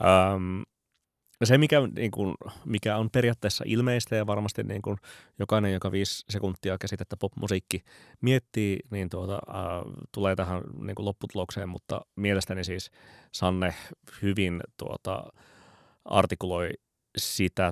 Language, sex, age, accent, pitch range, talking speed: Finnish, male, 20-39, native, 90-105 Hz, 85 wpm